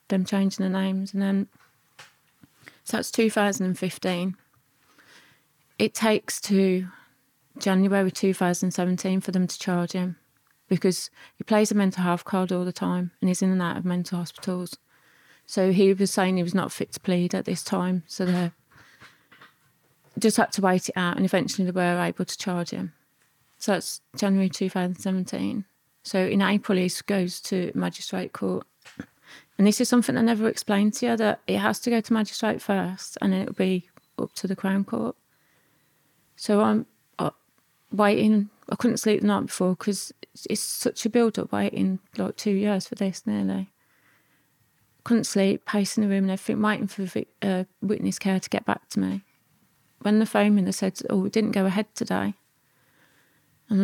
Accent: British